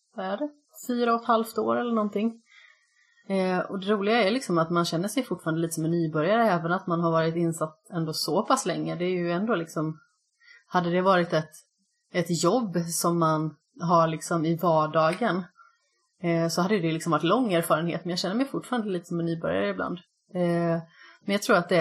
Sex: female